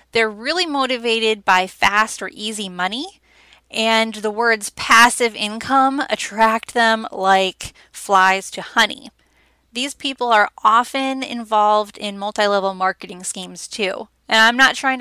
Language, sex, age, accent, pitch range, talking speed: English, female, 10-29, American, 200-235 Hz, 130 wpm